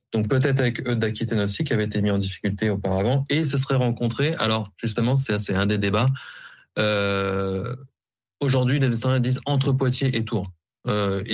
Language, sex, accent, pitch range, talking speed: French, male, French, 100-125 Hz, 185 wpm